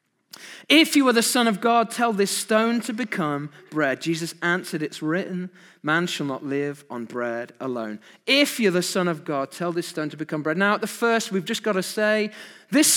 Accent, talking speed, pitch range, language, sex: British, 215 wpm, 185-290 Hz, English, male